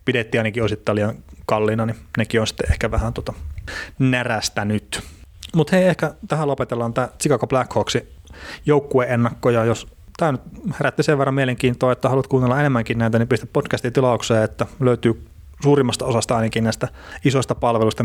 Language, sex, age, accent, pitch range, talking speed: Finnish, male, 30-49, native, 105-130 Hz, 160 wpm